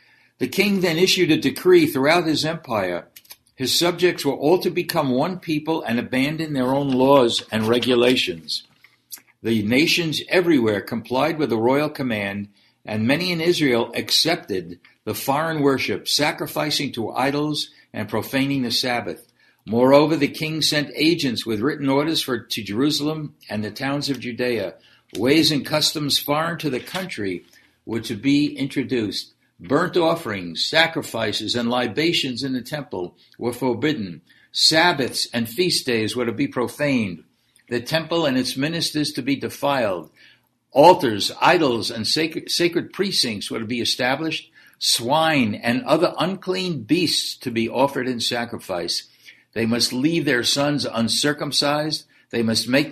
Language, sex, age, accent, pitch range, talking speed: English, male, 60-79, American, 120-155 Hz, 145 wpm